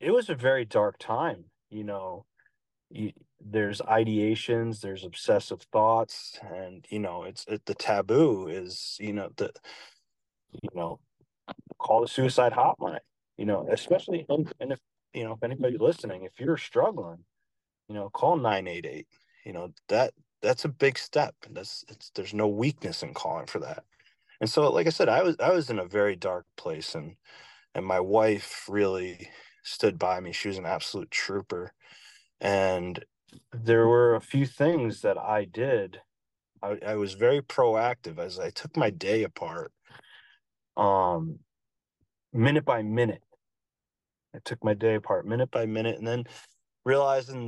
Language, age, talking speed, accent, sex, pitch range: English, 30-49, 165 wpm, American, male, 100-120 Hz